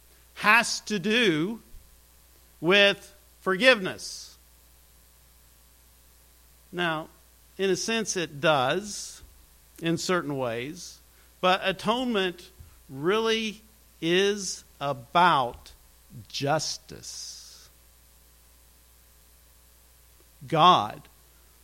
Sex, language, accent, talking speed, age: male, English, American, 60 wpm, 50-69